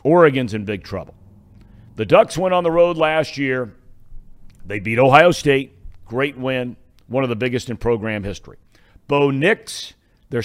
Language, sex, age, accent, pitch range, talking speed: English, male, 50-69, American, 110-150 Hz, 160 wpm